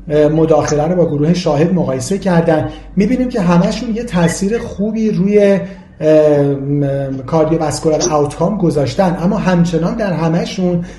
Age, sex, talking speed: 40-59, male, 115 wpm